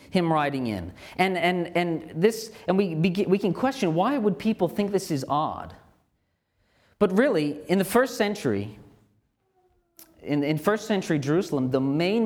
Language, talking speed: English, 160 wpm